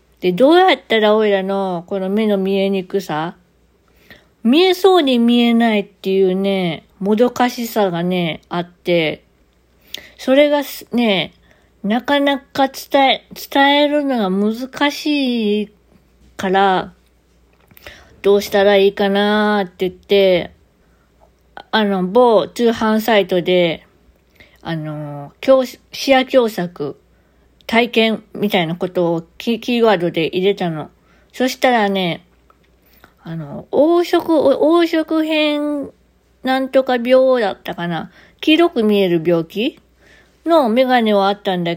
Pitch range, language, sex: 180-260 Hz, Japanese, female